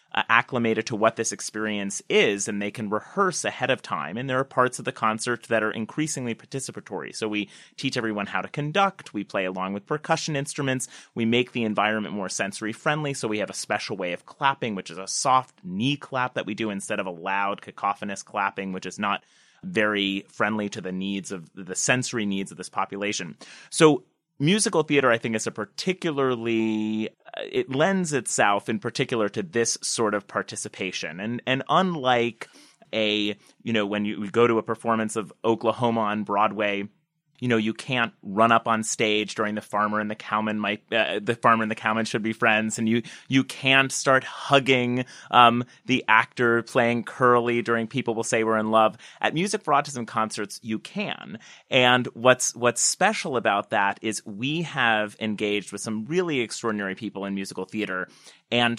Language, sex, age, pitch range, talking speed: English, male, 30-49, 105-125 Hz, 190 wpm